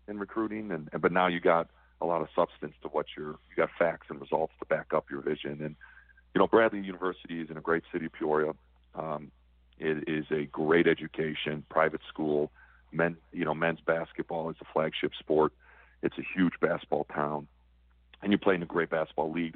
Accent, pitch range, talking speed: American, 75-95 Hz, 205 wpm